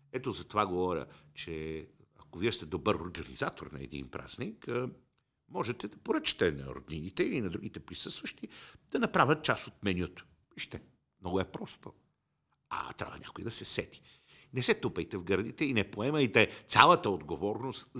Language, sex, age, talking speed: Bulgarian, male, 50-69, 155 wpm